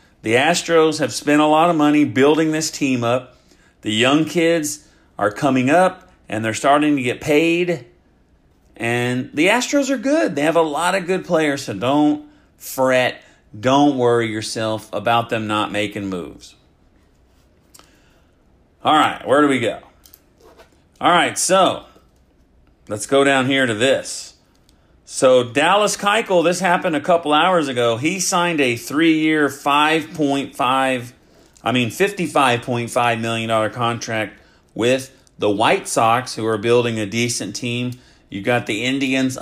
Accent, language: American, English